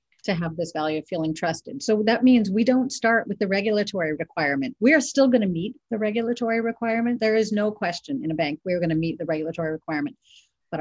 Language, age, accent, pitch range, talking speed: English, 40-59, American, 160-220 Hz, 220 wpm